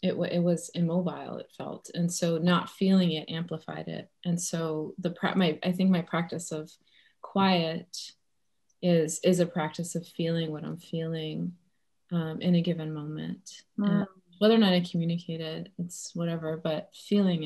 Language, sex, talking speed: English, female, 165 wpm